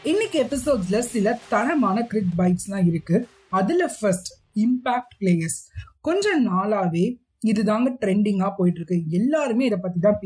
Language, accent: Tamil, native